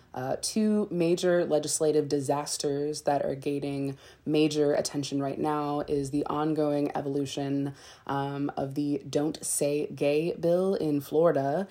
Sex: female